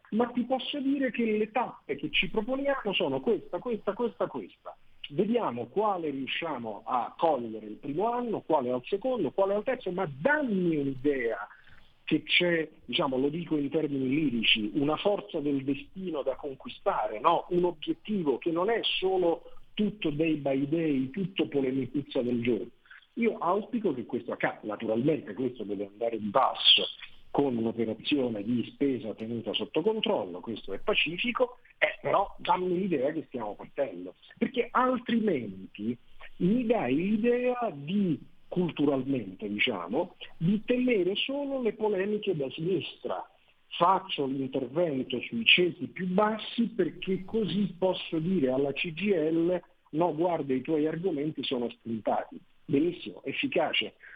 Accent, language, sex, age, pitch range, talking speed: native, Italian, male, 50-69, 140-215 Hz, 140 wpm